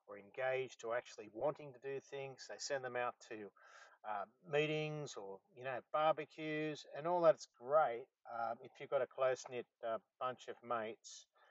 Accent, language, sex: Australian, English, male